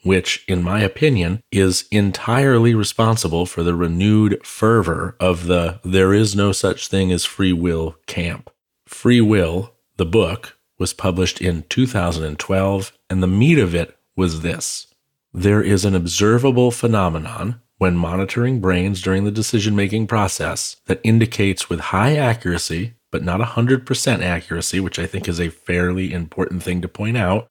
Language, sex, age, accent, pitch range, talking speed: English, male, 40-59, American, 90-110 Hz, 155 wpm